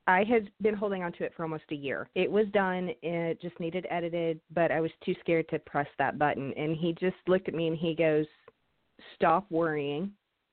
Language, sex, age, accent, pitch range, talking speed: English, female, 40-59, American, 165-210 Hz, 215 wpm